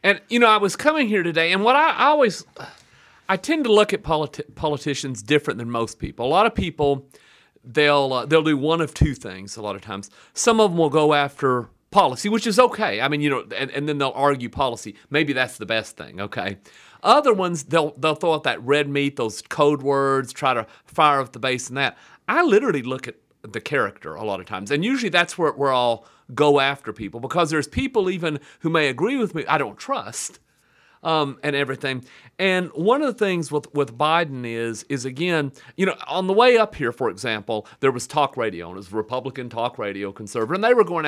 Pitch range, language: 125-165 Hz, English